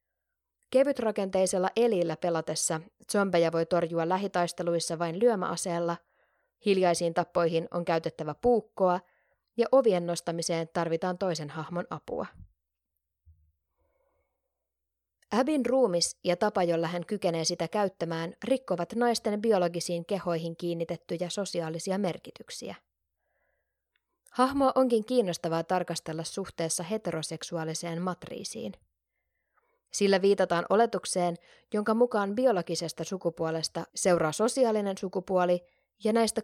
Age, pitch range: 20-39, 165-205 Hz